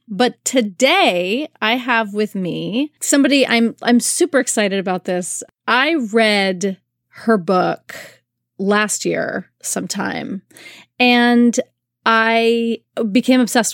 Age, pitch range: 30-49, 195-245 Hz